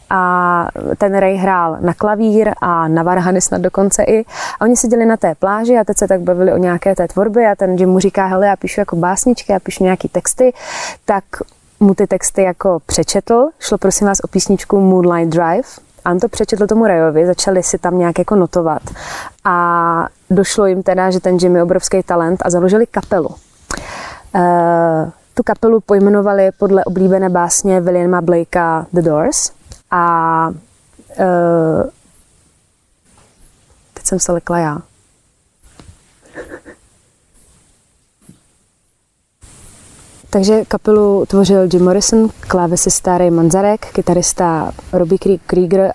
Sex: female